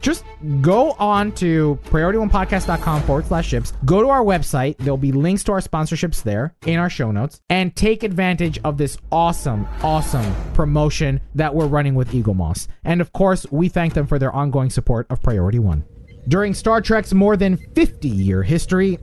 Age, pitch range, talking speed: 30-49, 135-205 Hz, 180 wpm